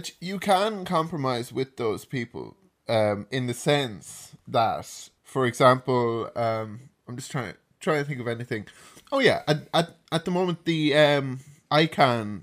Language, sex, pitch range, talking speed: English, male, 105-130 Hz, 160 wpm